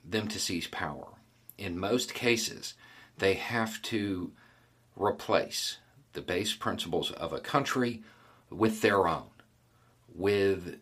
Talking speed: 115 wpm